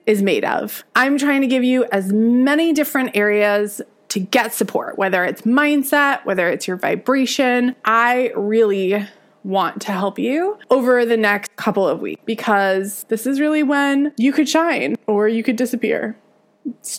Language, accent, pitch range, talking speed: English, American, 200-270 Hz, 165 wpm